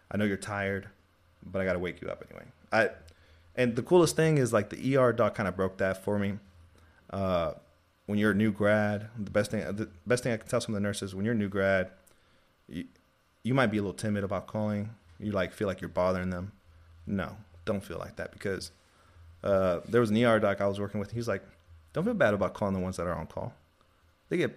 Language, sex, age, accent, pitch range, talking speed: English, male, 30-49, American, 90-115 Hz, 240 wpm